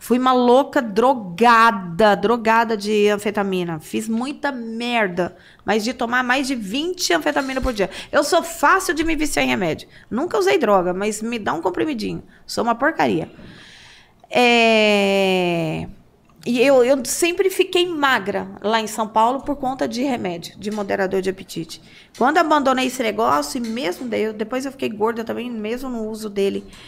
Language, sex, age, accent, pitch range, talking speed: Portuguese, female, 20-39, Brazilian, 210-275 Hz, 165 wpm